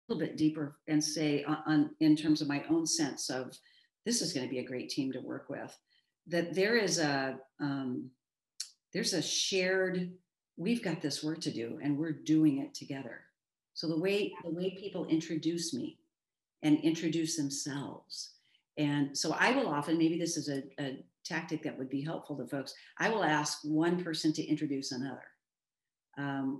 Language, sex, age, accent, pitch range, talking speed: English, female, 50-69, American, 140-170 Hz, 180 wpm